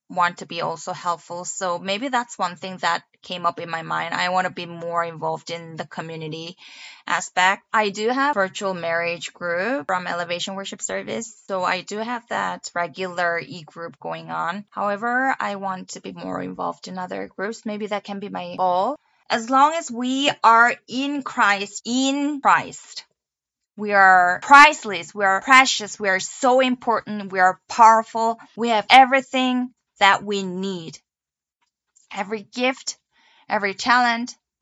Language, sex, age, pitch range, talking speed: English, female, 20-39, 180-230 Hz, 160 wpm